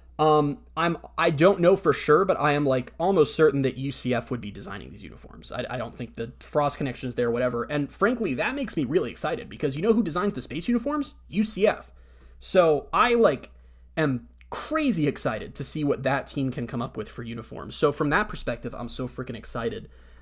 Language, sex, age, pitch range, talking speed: English, male, 30-49, 115-165 Hz, 215 wpm